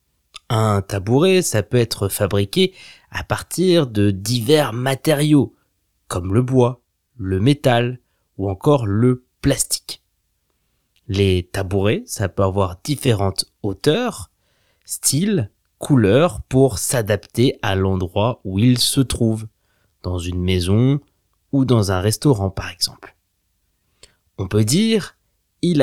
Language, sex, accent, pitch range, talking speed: French, male, French, 95-135 Hz, 115 wpm